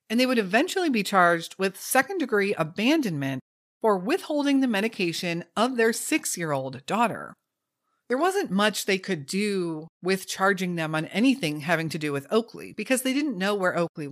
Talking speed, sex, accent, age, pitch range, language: 165 wpm, female, American, 40-59, 165-230 Hz, English